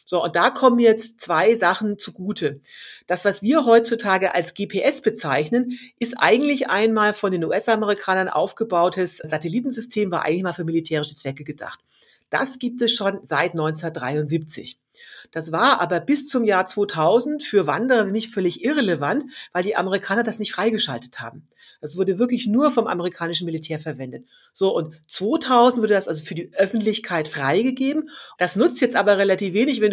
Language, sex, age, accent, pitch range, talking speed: German, female, 40-59, German, 170-230 Hz, 160 wpm